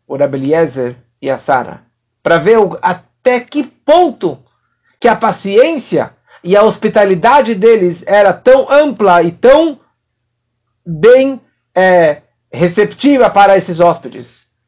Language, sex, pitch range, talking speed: Portuguese, male, 125-200 Hz, 120 wpm